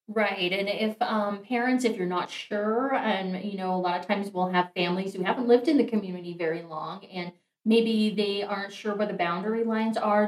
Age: 30-49